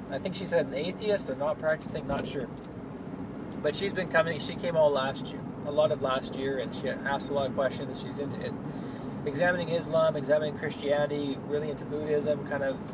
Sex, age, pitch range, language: male, 20-39, 135-155 Hz, English